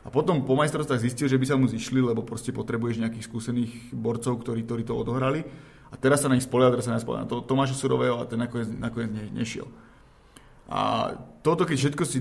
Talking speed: 205 wpm